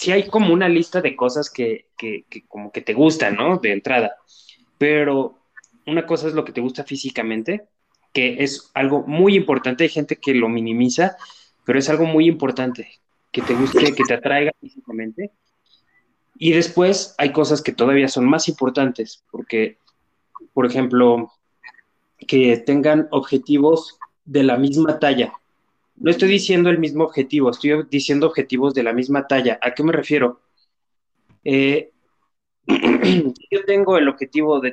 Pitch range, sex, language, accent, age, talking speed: 125-155 Hz, male, Spanish, Mexican, 20-39, 155 wpm